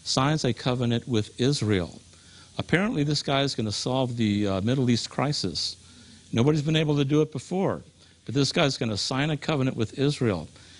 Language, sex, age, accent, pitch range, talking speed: English, male, 50-69, American, 100-130 Hz, 195 wpm